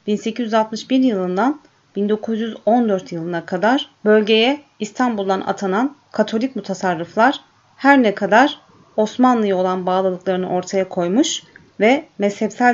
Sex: female